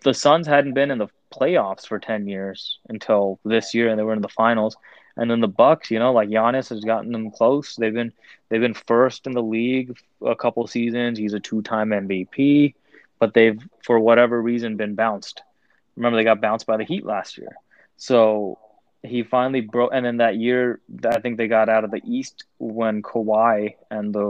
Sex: male